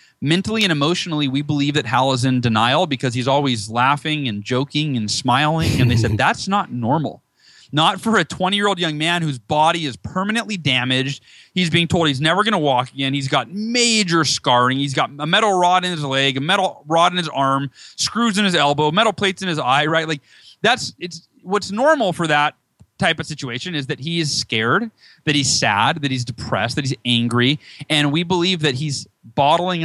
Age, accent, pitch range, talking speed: 30-49, American, 130-165 Hz, 205 wpm